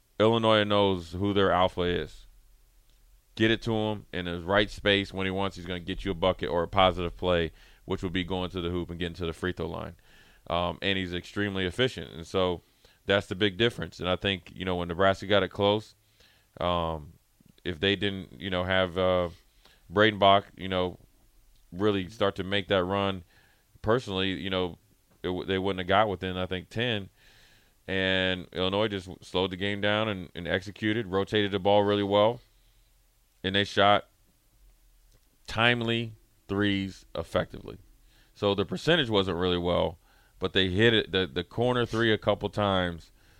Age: 30-49